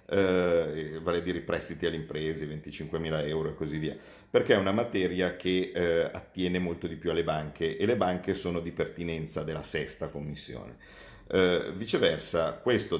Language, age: Italian, 50-69